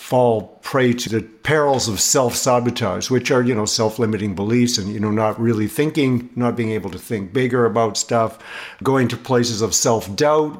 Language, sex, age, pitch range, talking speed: English, male, 60-79, 105-125 Hz, 180 wpm